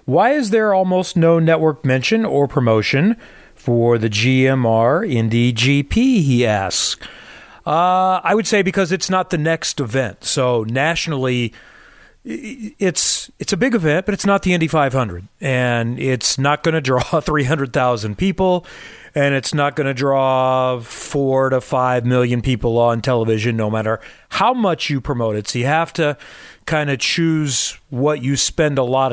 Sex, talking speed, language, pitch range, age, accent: male, 165 wpm, English, 125-160 Hz, 40-59, American